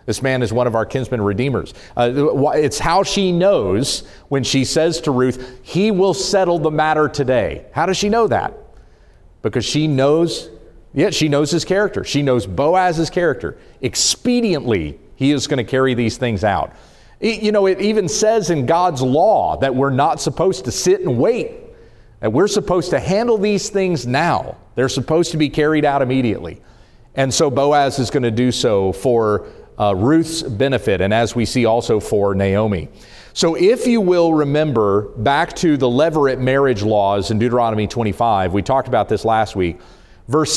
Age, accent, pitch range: 40-59, American, 115-165 Hz